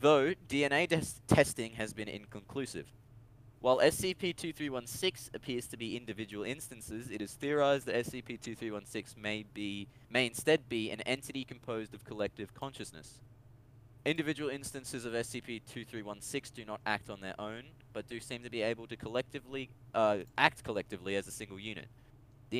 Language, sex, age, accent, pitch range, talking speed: English, male, 20-39, Australian, 105-125 Hz, 150 wpm